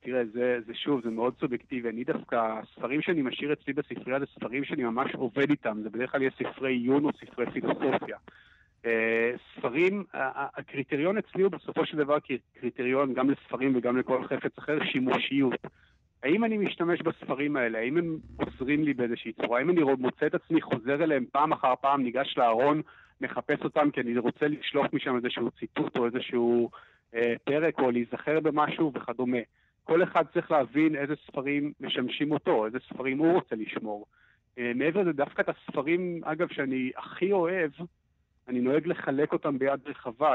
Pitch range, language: 125-155 Hz, Hebrew